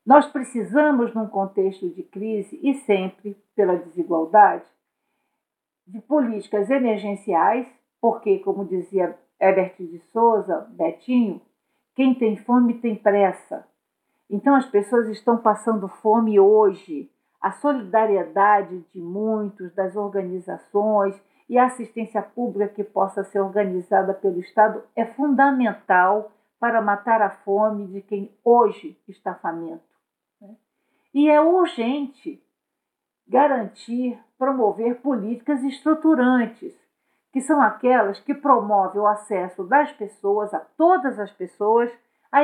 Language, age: Portuguese, 50-69